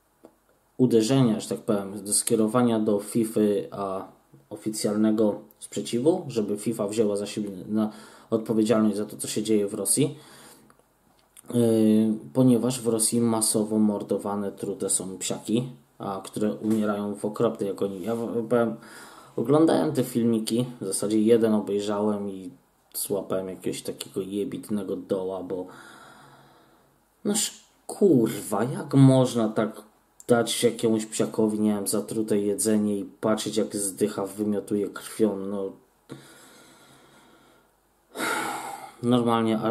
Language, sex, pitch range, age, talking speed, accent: Polish, male, 100-115 Hz, 20-39, 115 wpm, native